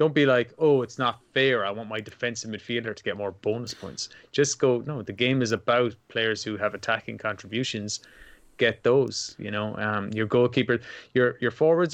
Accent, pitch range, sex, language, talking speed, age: Irish, 110-130 Hz, male, English, 195 wpm, 20-39